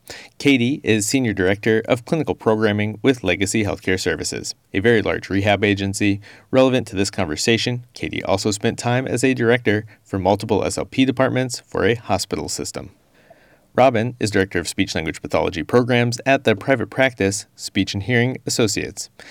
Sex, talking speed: male, 160 wpm